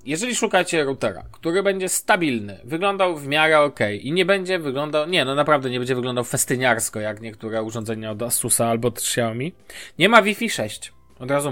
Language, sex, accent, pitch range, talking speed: Polish, male, native, 115-150 Hz, 180 wpm